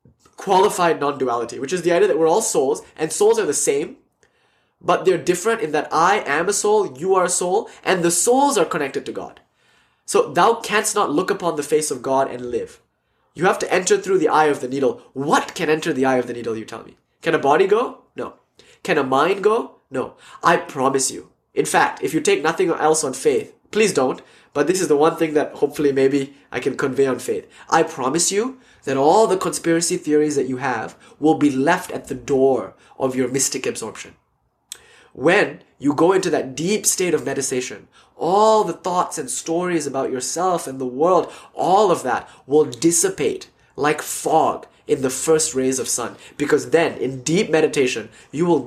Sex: male